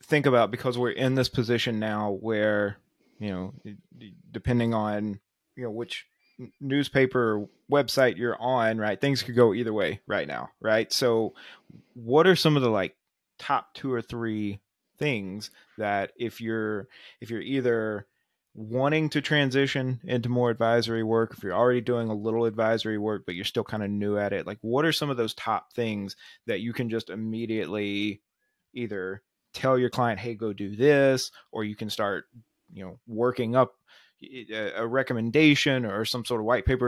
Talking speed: 175 wpm